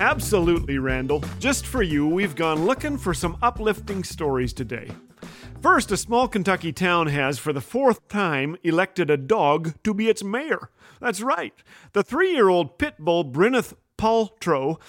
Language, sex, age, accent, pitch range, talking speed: English, male, 40-59, American, 150-210 Hz, 155 wpm